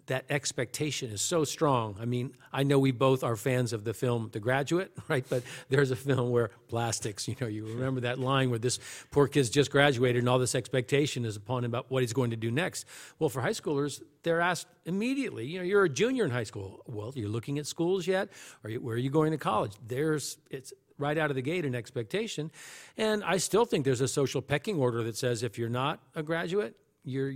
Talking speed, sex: 235 wpm, male